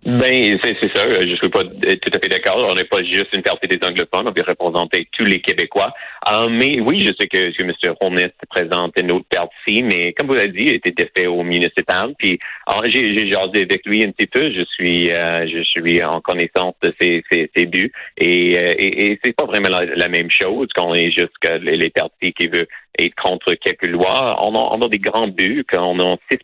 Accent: Canadian